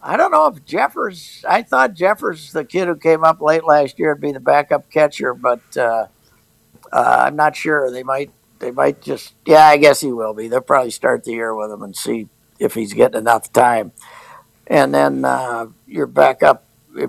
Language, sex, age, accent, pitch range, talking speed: English, male, 60-79, American, 115-155 Hz, 205 wpm